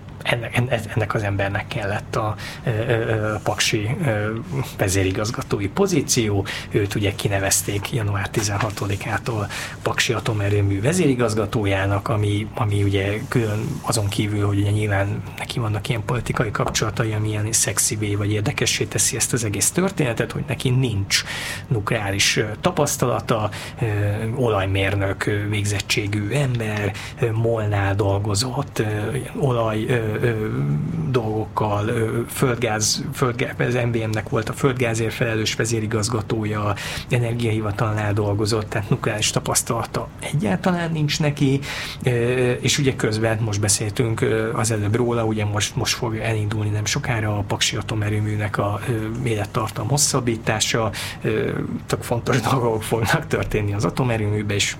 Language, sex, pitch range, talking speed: Hungarian, male, 105-125 Hz, 110 wpm